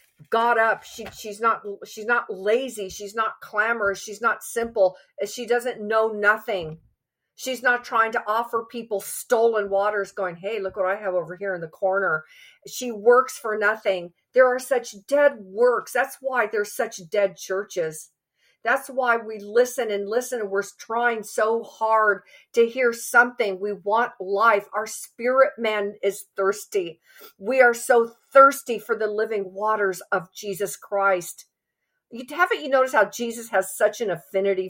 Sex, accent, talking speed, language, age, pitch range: female, American, 165 wpm, English, 50-69, 190-235 Hz